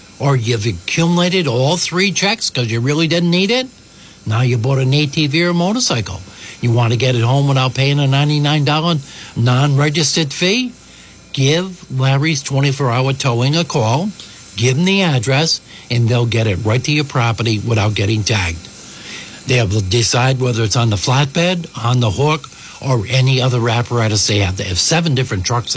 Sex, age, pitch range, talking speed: male, 60-79, 115-160 Hz, 175 wpm